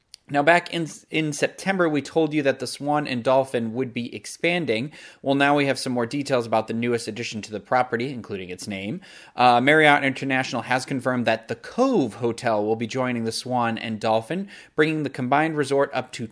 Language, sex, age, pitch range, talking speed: English, male, 30-49, 120-155 Hz, 200 wpm